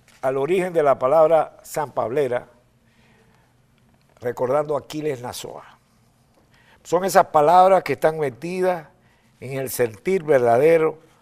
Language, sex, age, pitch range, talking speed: Spanish, male, 60-79, 120-155 Hz, 110 wpm